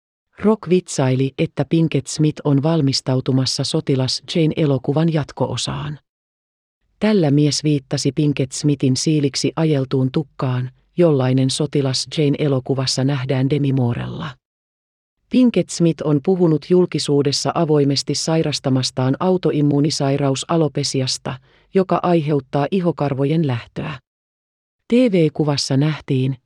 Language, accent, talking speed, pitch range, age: Finnish, native, 90 wpm, 135-165 Hz, 40-59